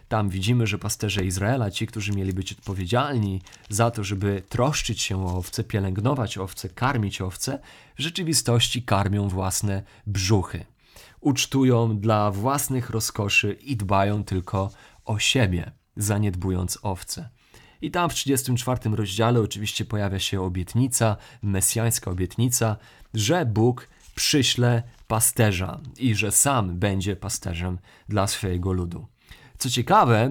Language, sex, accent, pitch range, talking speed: Polish, male, native, 100-130 Hz, 125 wpm